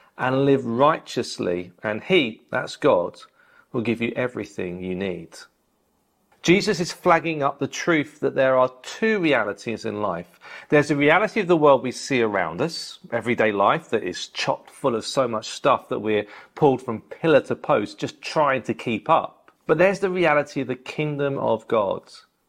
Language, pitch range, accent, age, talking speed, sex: English, 120-180 Hz, British, 40-59, 180 wpm, male